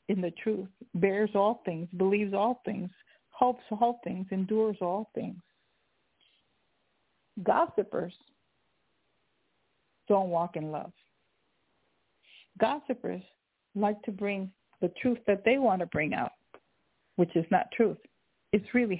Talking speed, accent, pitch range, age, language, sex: 120 wpm, American, 190-230 Hz, 50-69, English, female